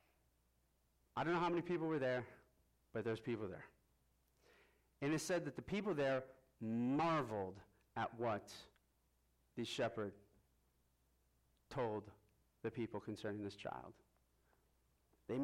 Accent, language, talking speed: American, English, 120 wpm